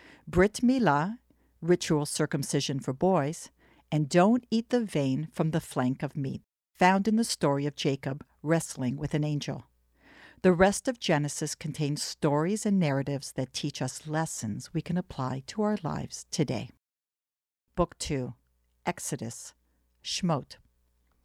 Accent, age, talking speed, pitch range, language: American, 60-79, 140 wpm, 140-190 Hz, English